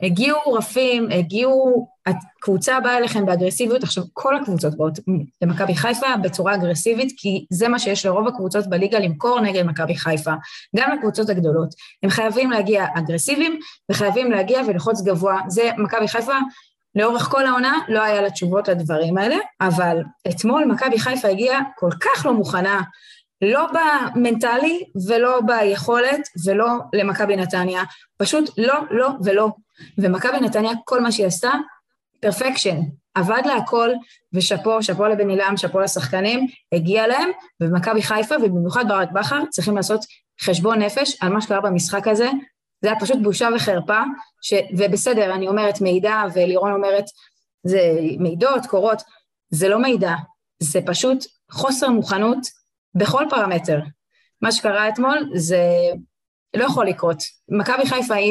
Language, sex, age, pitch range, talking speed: Hebrew, female, 20-39, 185-245 Hz, 135 wpm